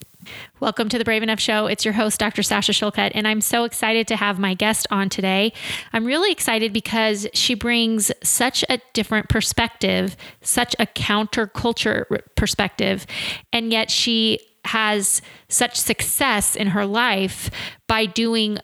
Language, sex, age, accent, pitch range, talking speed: English, female, 20-39, American, 205-230 Hz, 150 wpm